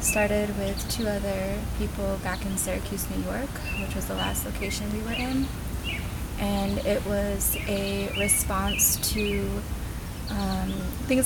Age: 20-39